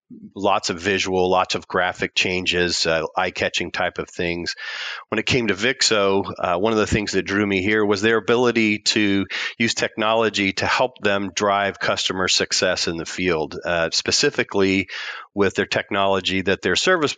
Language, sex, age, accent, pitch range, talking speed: English, male, 40-59, American, 90-105 Hz, 170 wpm